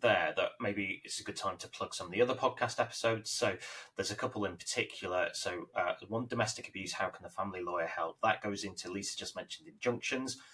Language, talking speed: English, 220 wpm